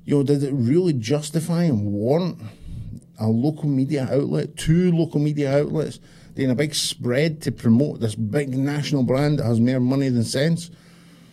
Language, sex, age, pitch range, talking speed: English, male, 50-69, 110-145 Hz, 170 wpm